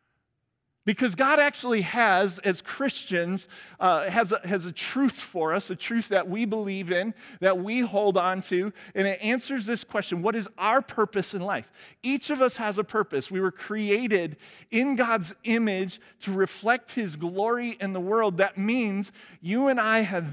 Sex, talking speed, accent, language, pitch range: male, 175 wpm, American, English, 135-210 Hz